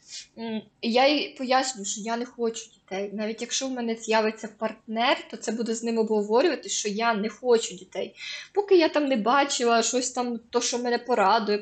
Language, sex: Ukrainian, female